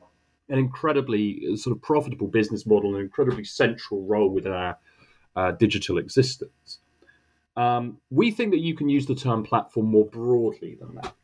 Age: 30-49